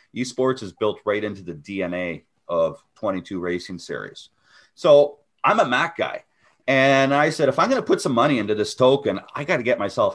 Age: 30-49